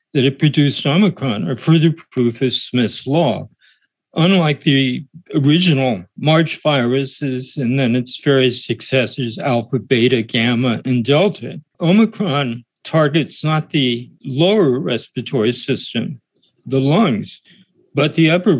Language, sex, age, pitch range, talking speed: English, male, 50-69, 125-155 Hz, 120 wpm